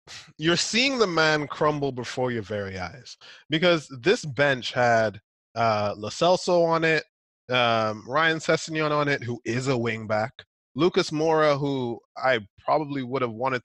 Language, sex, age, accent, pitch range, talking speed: English, male, 20-39, American, 115-160 Hz, 155 wpm